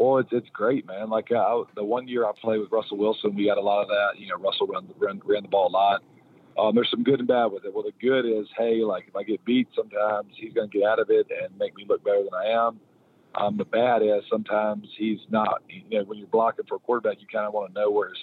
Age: 40-59